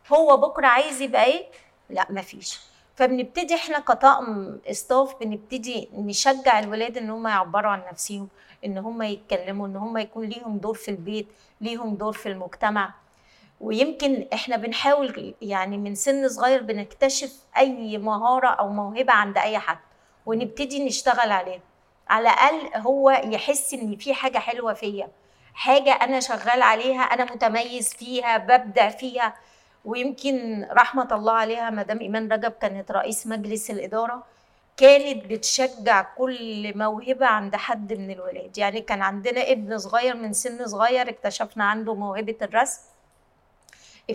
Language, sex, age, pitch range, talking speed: Arabic, female, 30-49, 210-255 Hz, 135 wpm